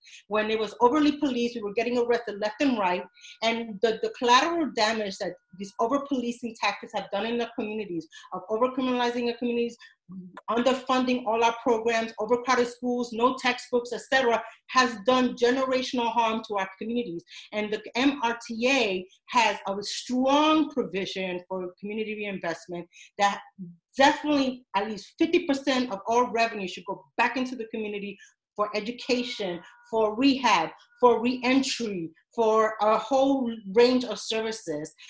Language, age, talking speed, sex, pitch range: English, 40-59, 140 wpm, female, 205-250 Hz